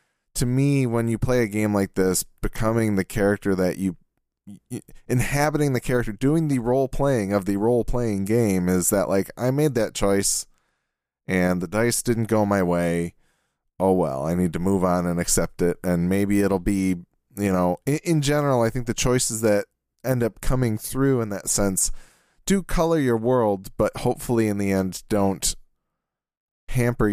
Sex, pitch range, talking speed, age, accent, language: male, 95-125 Hz, 180 wpm, 20-39, American, English